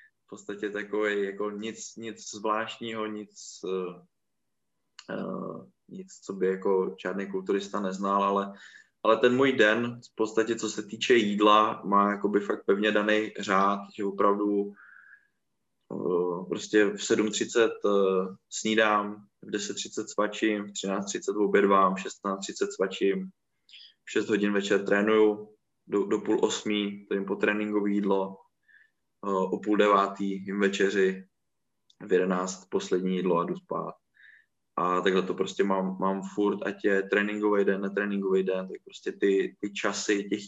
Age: 20-39